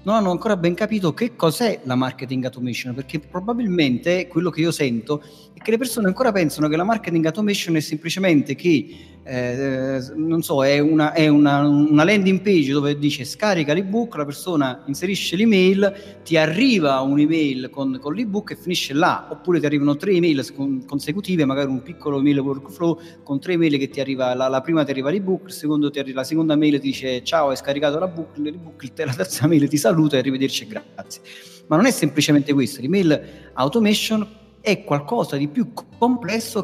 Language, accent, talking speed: Italian, native, 190 wpm